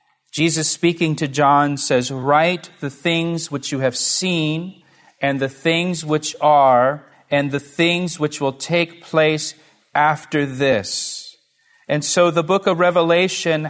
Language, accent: English, American